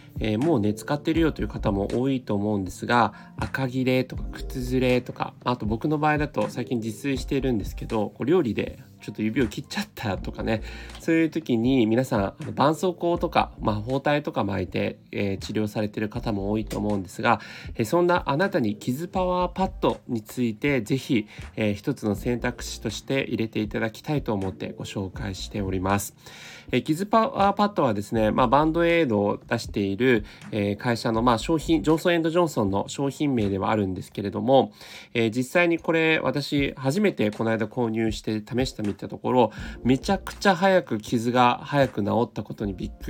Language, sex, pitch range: Japanese, male, 105-145 Hz